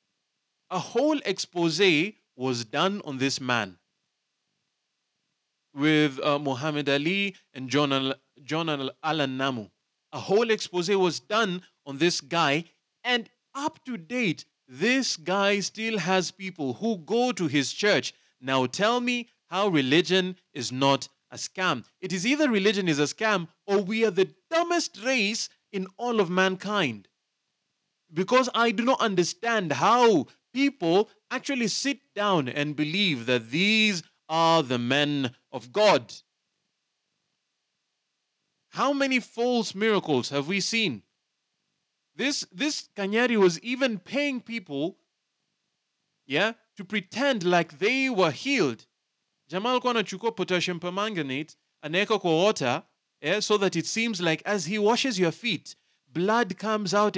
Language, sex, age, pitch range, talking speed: English, male, 30-49, 155-225 Hz, 130 wpm